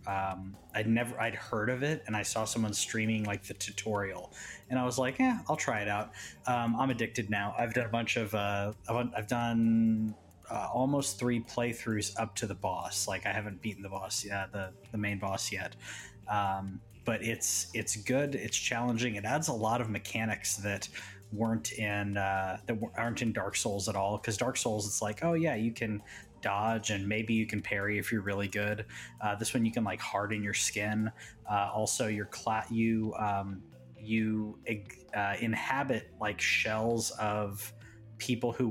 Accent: American